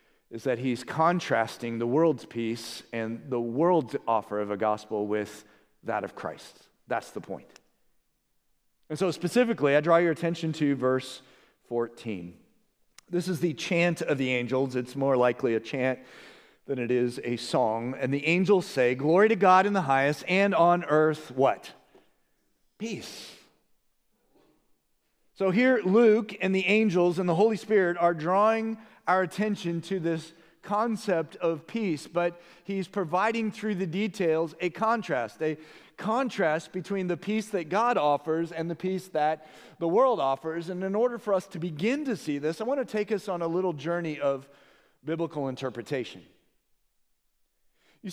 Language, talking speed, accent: English, 160 wpm, American